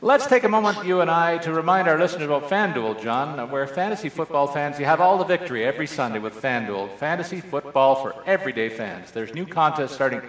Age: 50-69